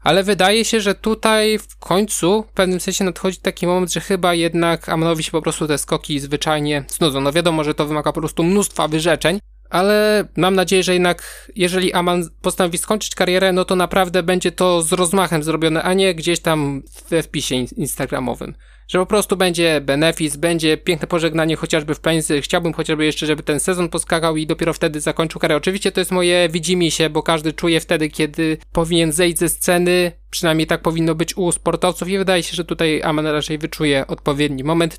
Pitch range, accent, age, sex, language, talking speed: 160-180 Hz, native, 20-39, male, Polish, 190 wpm